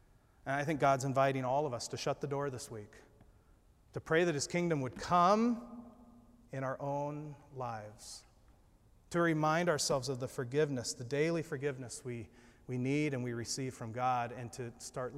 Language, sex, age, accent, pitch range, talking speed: English, male, 40-59, American, 120-150 Hz, 180 wpm